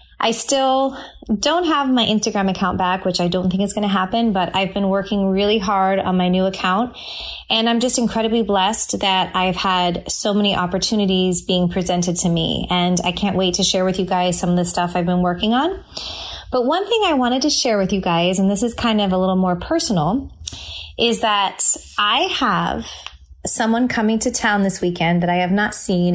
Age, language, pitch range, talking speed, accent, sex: 20-39, English, 180-225 Hz, 210 wpm, American, female